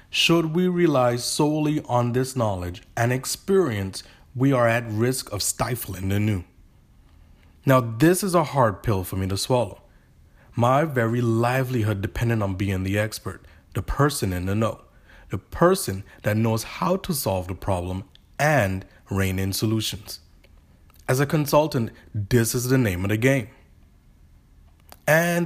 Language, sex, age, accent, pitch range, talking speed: English, male, 30-49, American, 95-135 Hz, 150 wpm